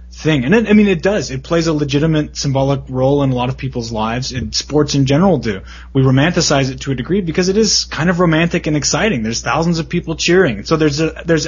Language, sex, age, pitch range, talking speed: English, male, 20-39, 120-160 Hz, 245 wpm